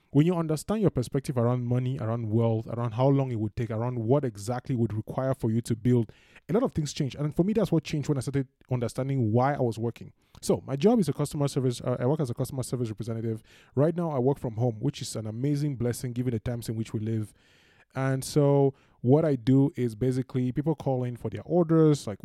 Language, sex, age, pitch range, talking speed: English, male, 20-39, 115-140 Hz, 245 wpm